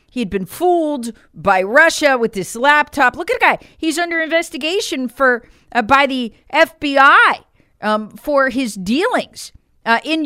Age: 40-59